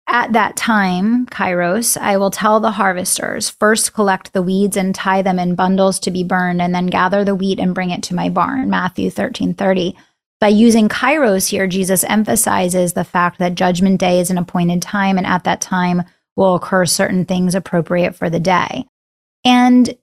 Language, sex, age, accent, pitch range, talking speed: English, female, 30-49, American, 190-230 Hz, 190 wpm